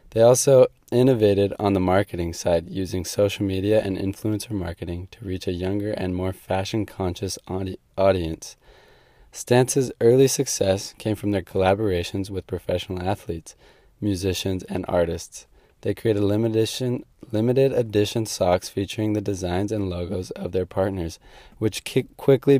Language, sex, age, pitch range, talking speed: English, male, 20-39, 95-110 Hz, 135 wpm